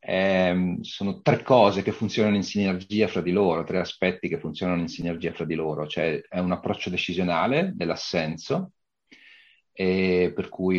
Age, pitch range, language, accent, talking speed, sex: 40-59, 85-100 Hz, Italian, native, 160 wpm, male